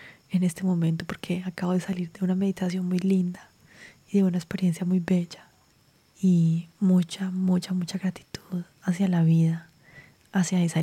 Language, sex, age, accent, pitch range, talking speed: Spanish, female, 20-39, Colombian, 175-190 Hz, 155 wpm